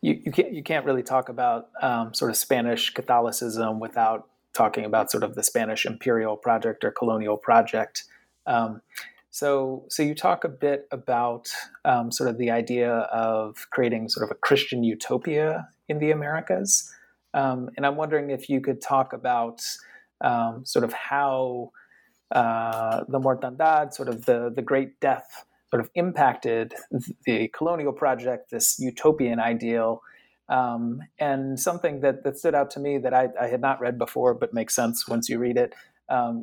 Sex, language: male, English